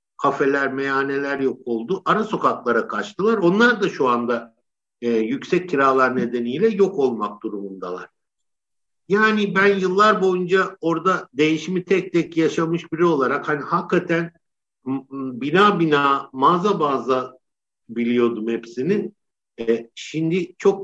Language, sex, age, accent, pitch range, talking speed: Turkish, male, 60-79, native, 130-185 Hz, 120 wpm